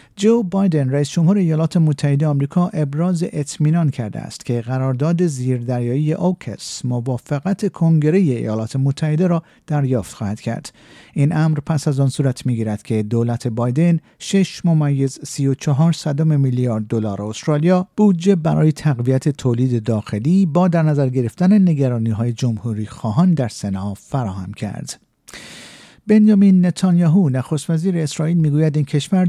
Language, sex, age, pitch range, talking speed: Persian, male, 50-69, 120-165 Hz, 130 wpm